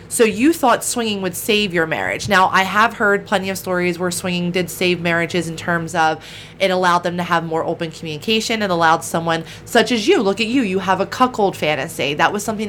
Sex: female